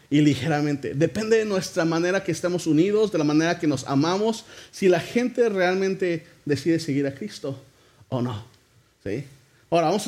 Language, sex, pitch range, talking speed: English, male, 155-205 Hz, 175 wpm